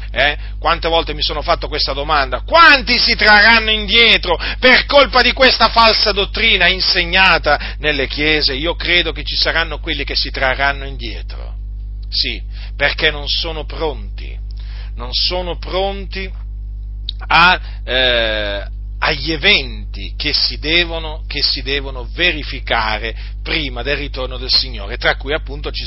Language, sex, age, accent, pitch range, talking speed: Italian, male, 40-59, native, 105-160 Hz, 130 wpm